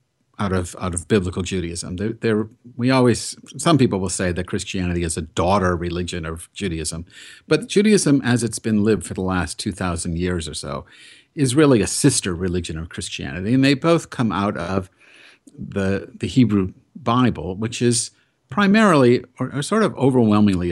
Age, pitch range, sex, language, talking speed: 50-69, 95-130 Hz, male, English, 175 wpm